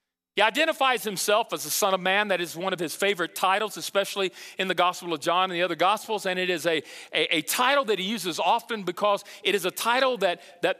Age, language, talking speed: 40-59, English, 240 wpm